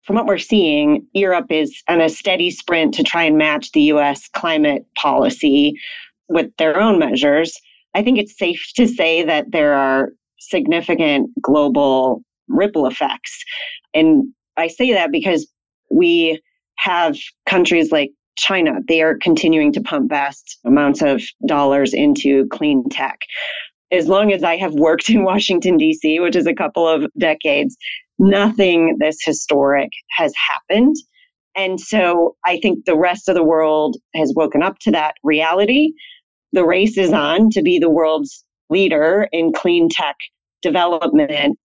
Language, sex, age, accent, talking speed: English, female, 30-49, American, 150 wpm